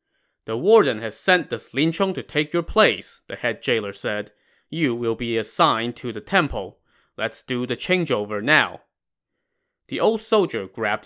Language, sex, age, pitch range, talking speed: English, male, 20-39, 105-135 Hz, 170 wpm